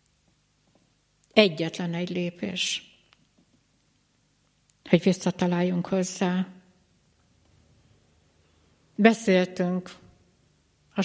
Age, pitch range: 60-79, 175-200 Hz